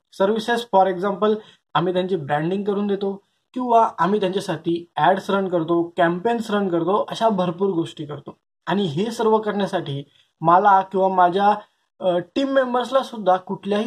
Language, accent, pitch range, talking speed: Marathi, native, 170-220 Hz, 115 wpm